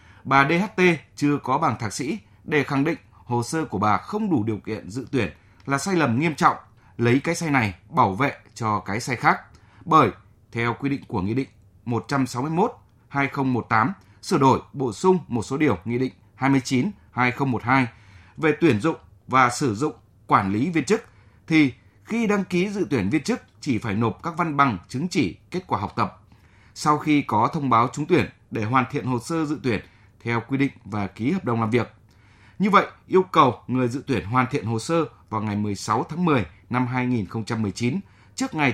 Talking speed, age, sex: 195 wpm, 20-39, male